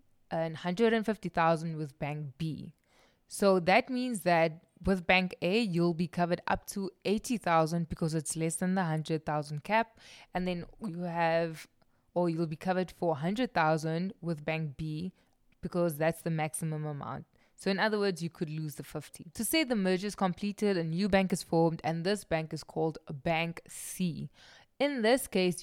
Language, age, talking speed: English, 20-39, 170 wpm